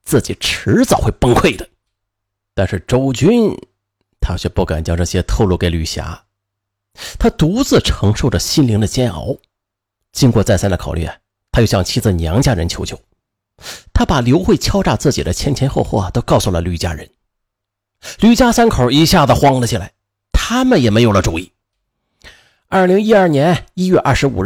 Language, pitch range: Chinese, 100-150 Hz